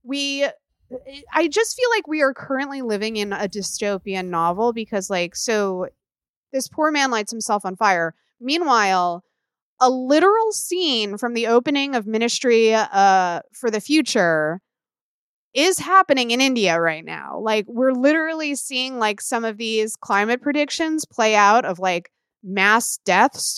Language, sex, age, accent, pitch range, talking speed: English, female, 20-39, American, 195-260 Hz, 150 wpm